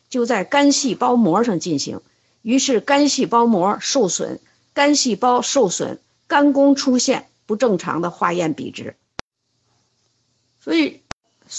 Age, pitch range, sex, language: 50-69, 205-270 Hz, female, Chinese